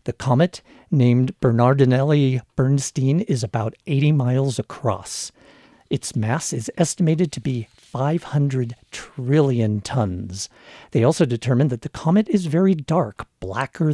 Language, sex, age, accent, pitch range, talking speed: English, male, 50-69, American, 120-160 Hz, 120 wpm